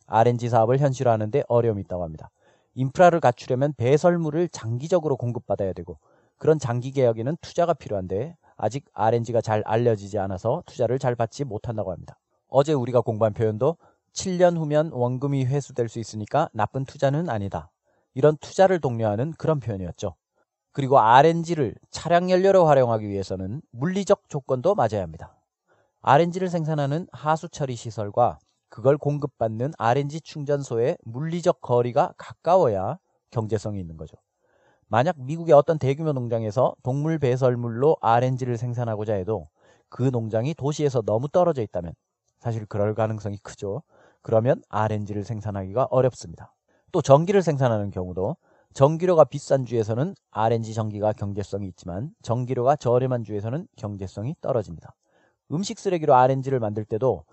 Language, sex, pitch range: Korean, male, 110-145 Hz